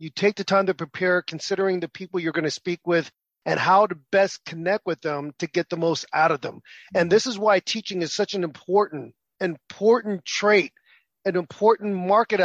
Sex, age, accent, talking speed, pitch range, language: male, 40-59, American, 205 wpm, 175-210 Hz, English